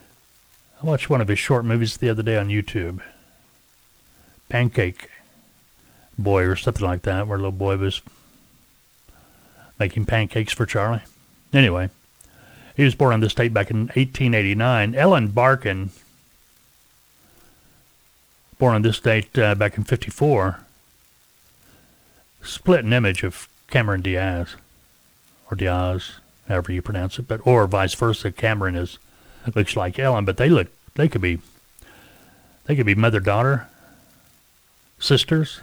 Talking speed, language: 135 wpm, English